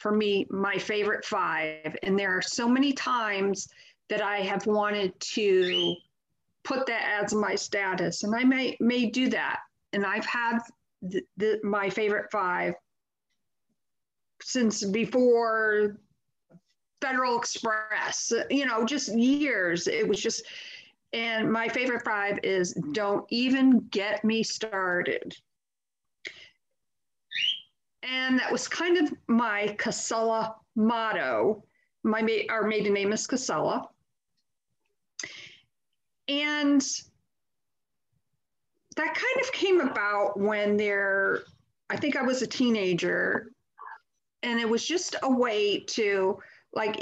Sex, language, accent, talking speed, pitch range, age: female, English, American, 115 wpm, 200-250 Hz, 50-69